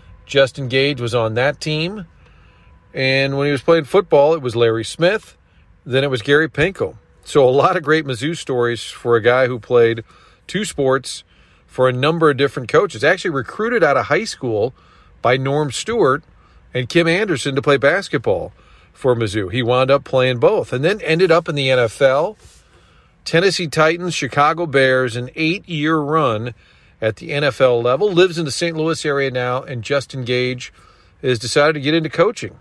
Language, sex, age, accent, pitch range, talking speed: English, male, 40-59, American, 125-160 Hz, 180 wpm